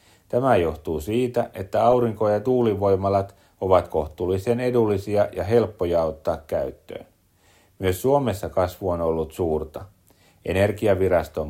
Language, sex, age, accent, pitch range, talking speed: Finnish, male, 40-59, native, 95-115 Hz, 110 wpm